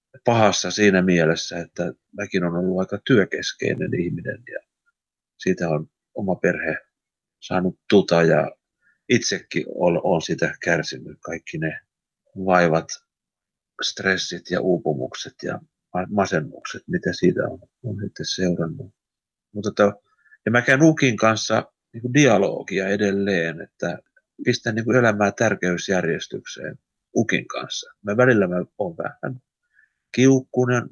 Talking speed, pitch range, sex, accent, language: 120 wpm, 90-115 Hz, male, native, Finnish